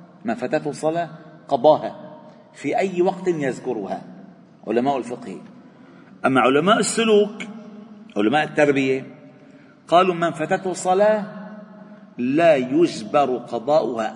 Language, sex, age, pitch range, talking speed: Arabic, male, 40-59, 170-225 Hz, 95 wpm